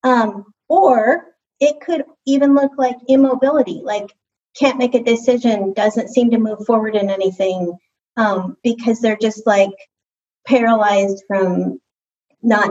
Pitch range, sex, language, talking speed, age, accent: 205-250 Hz, female, English, 130 wpm, 30-49, American